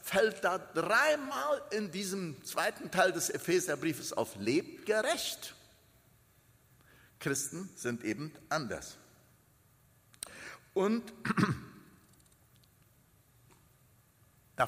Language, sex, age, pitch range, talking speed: German, male, 60-79, 130-195 Hz, 75 wpm